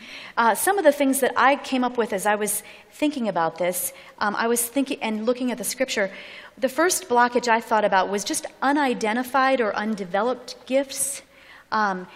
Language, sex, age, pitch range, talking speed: English, female, 40-59, 225-290 Hz, 190 wpm